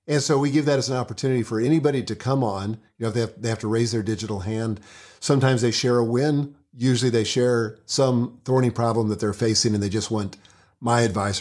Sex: male